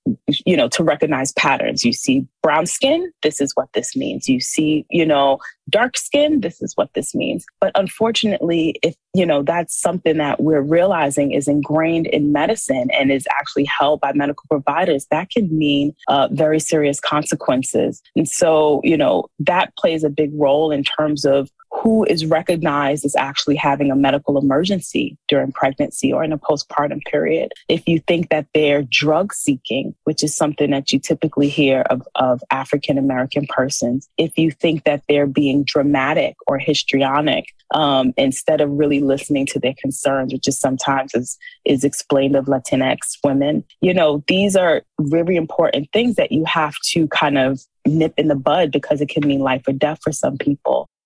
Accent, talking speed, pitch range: American, 180 wpm, 140-165 Hz